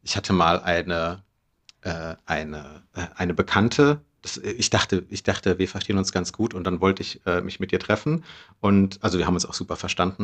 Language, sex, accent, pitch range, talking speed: German, male, German, 100-125 Hz, 210 wpm